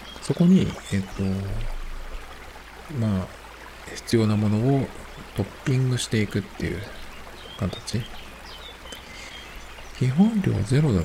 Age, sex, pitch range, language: 50-69, male, 90-115 Hz, Japanese